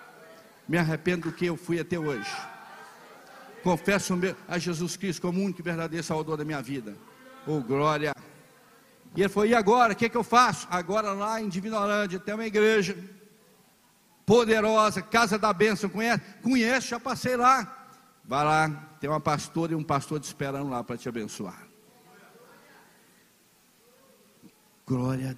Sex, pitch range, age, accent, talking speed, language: male, 165-205 Hz, 50-69, Brazilian, 155 wpm, Portuguese